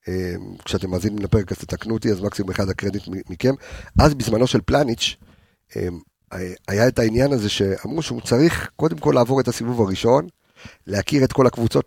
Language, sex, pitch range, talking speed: Hebrew, male, 100-135 Hz, 165 wpm